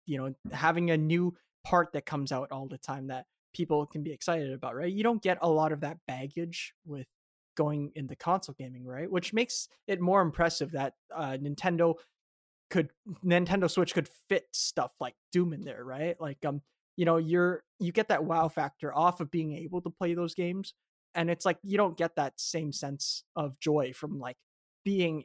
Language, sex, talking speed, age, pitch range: English, male, 200 wpm, 20-39, 145-175 Hz